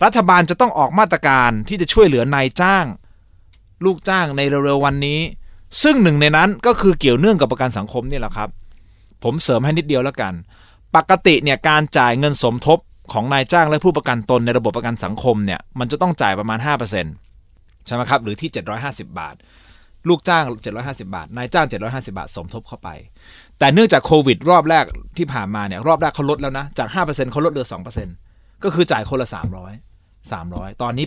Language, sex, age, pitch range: Thai, male, 20-39, 105-175 Hz